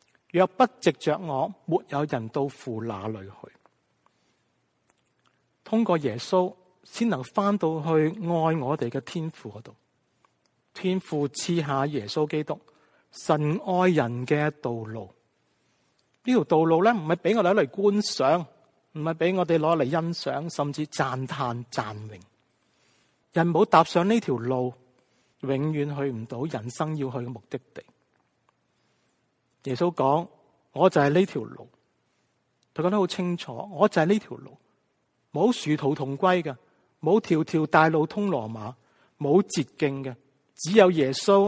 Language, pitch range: Chinese, 130-180 Hz